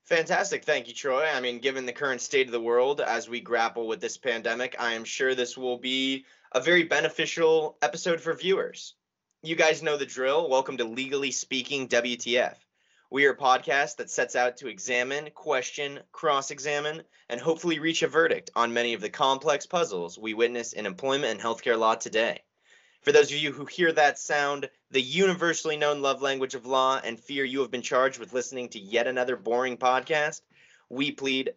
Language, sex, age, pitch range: English, male, 20-39, 125-160 Hz